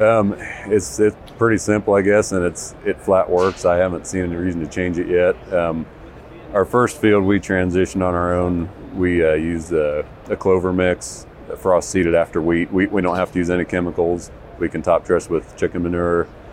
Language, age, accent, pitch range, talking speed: English, 40-59, American, 80-90 Hz, 205 wpm